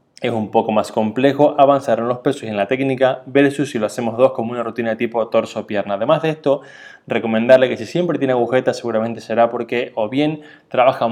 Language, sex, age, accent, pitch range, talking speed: Spanish, male, 20-39, Argentinian, 115-135 Hz, 210 wpm